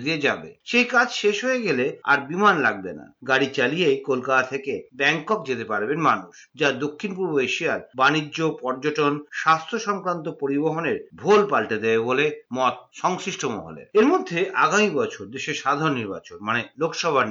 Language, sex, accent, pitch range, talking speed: Bengali, male, native, 140-205 Hz, 140 wpm